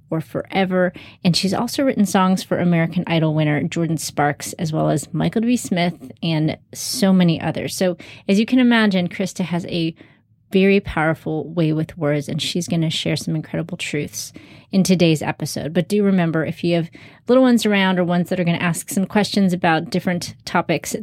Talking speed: 195 wpm